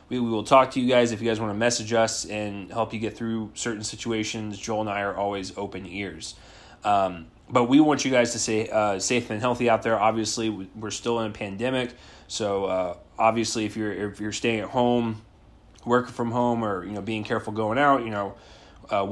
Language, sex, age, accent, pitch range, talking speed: English, male, 20-39, American, 105-125 Hz, 225 wpm